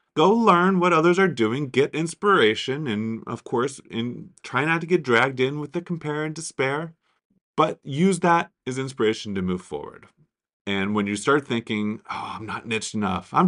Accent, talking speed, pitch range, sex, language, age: American, 185 wpm, 120-170 Hz, male, English, 30-49